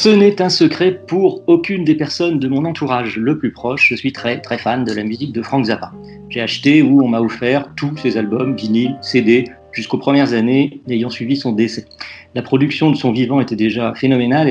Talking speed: 210 wpm